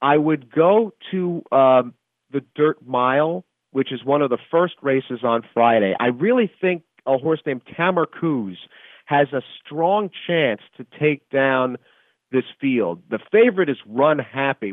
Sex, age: male, 40-59